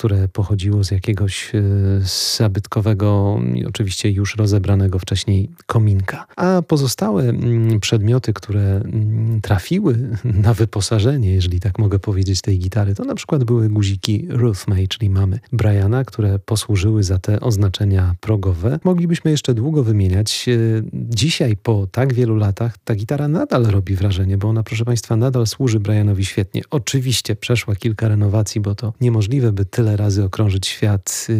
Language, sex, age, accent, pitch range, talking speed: Polish, male, 40-59, native, 100-120 Hz, 140 wpm